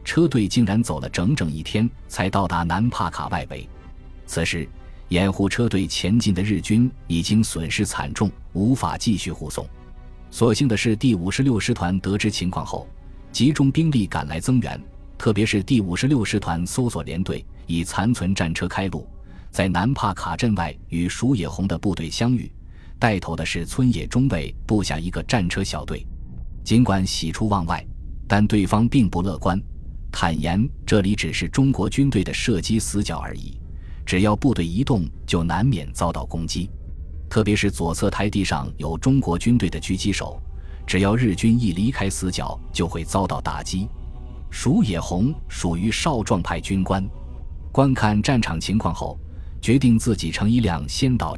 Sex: male